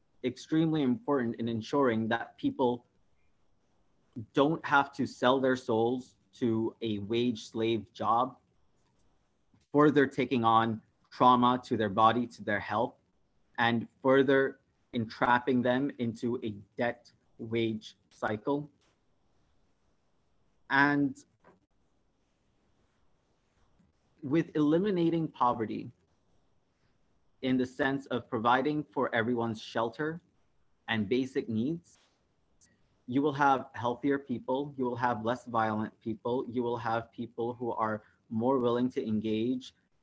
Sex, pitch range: male, 115-135 Hz